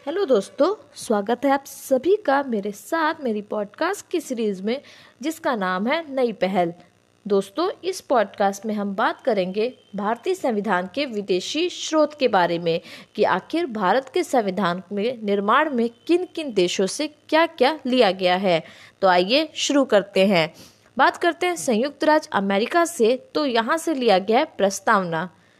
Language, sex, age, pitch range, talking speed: Hindi, female, 20-39, 195-295 Hz, 165 wpm